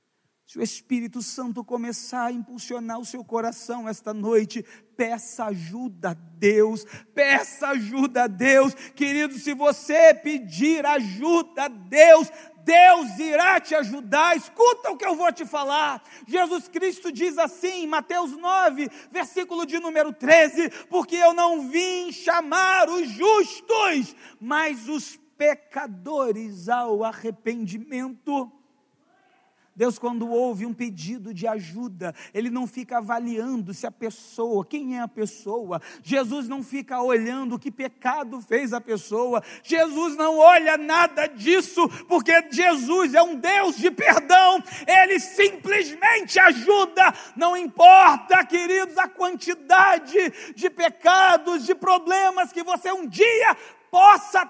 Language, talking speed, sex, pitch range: Portuguese, 130 wpm, male, 235-350 Hz